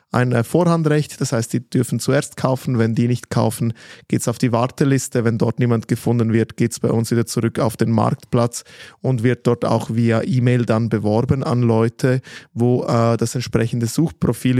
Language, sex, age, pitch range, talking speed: German, male, 20-39, 115-135 Hz, 190 wpm